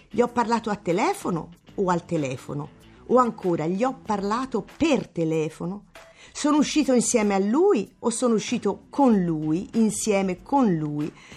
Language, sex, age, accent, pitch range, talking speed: Italian, female, 50-69, native, 175-230 Hz, 150 wpm